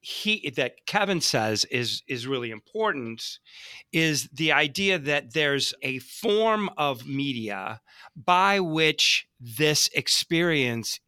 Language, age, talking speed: English, 40-59, 115 wpm